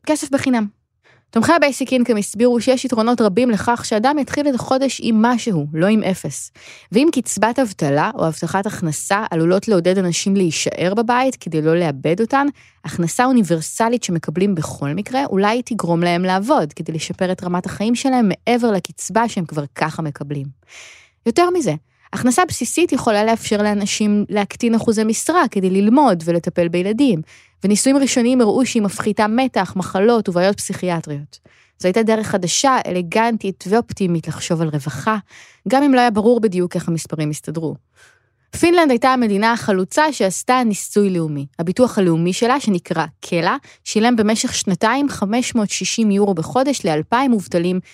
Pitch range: 170-240 Hz